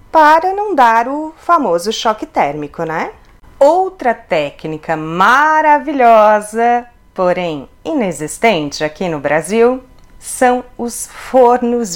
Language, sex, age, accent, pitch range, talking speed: Portuguese, female, 30-49, Brazilian, 170-260 Hz, 95 wpm